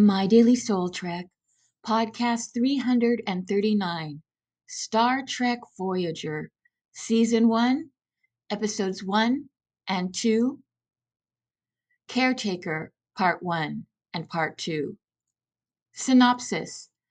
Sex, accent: female, American